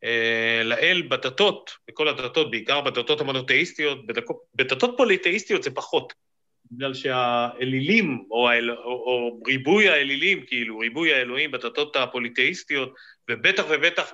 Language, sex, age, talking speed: Hebrew, male, 30-49, 115 wpm